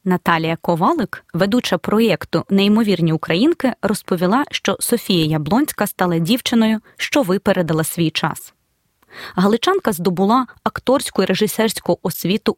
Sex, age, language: female, 20-39, Ukrainian